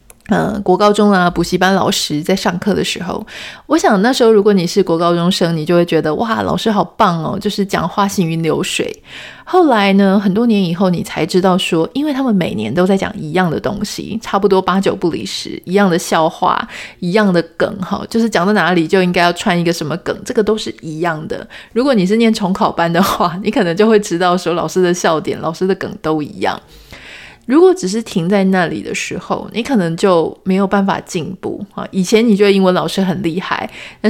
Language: Chinese